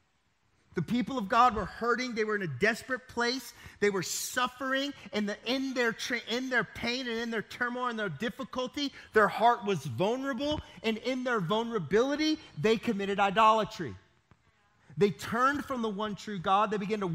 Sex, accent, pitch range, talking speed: male, American, 190-235 Hz, 170 wpm